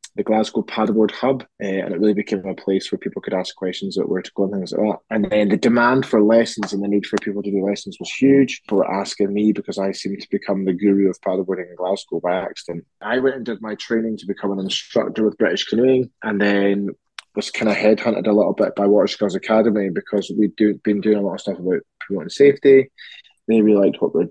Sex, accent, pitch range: male, British, 100-110 Hz